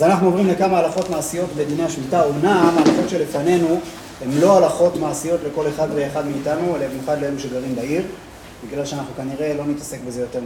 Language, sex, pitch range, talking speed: Hebrew, male, 145-180 Hz, 180 wpm